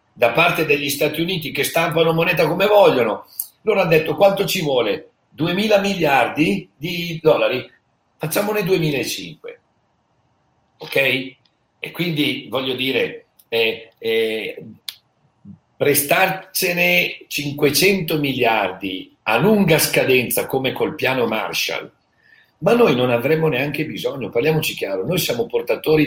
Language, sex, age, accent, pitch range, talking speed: Italian, male, 50-69, native, 145-190 Hz, 115 wpm